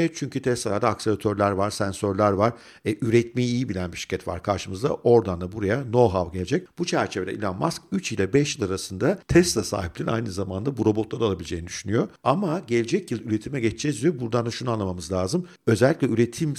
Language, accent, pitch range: Turkish, native, 100-135 Hz